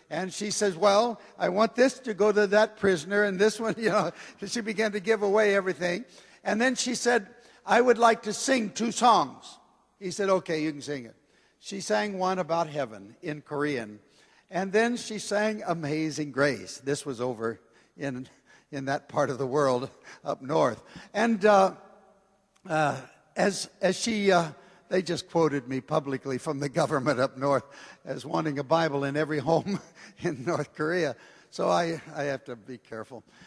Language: Korean